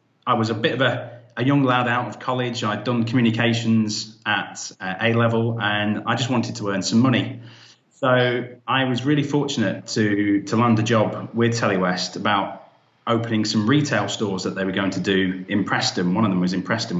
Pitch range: 105-125 Hz